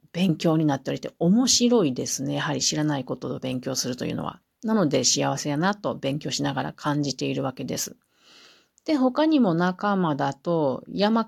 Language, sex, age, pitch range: Japanese, female, 40-59, 145-205 Hz